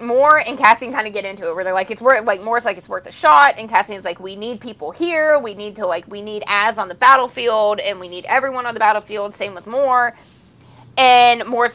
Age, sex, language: 20-39, female, English